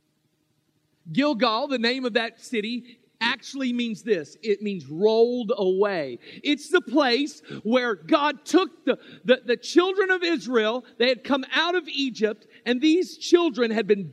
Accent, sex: American, male